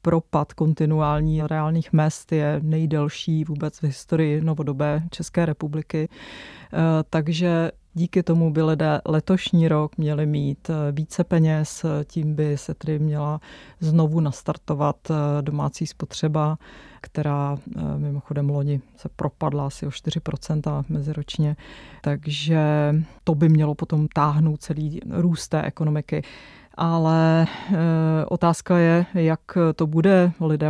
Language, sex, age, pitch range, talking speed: Czech, female, 30-49, 150-160 Hz, 115 wpm